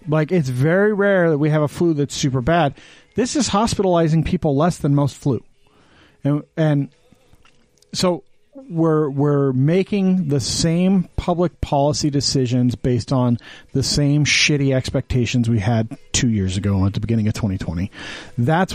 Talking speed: 155 wpm